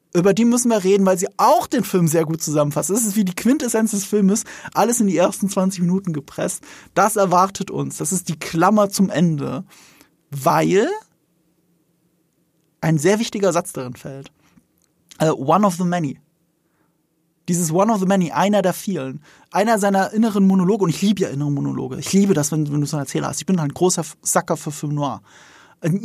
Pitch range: 160-200 Hz